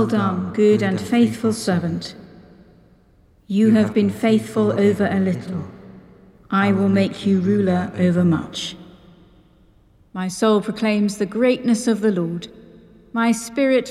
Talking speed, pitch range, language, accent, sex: 130 wpm, 195-230 Hz, English, British, female